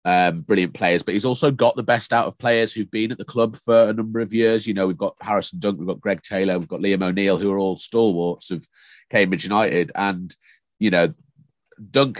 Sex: male